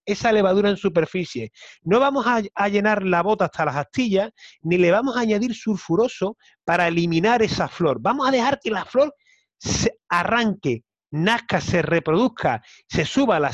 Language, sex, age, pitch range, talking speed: Spanish, male, 30-49, 165-230 Hz, 165 wpm